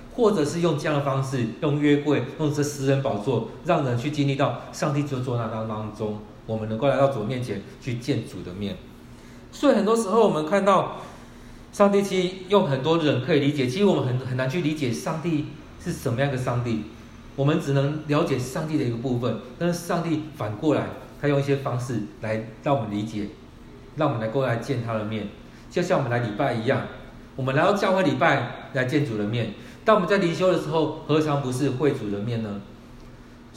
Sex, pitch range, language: male, 120-175 Hz, Chinese